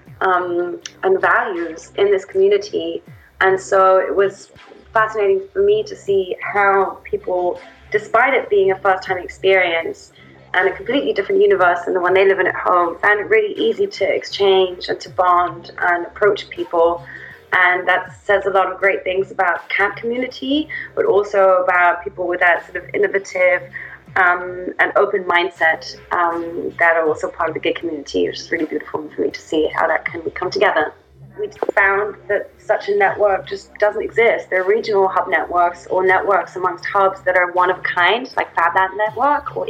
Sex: female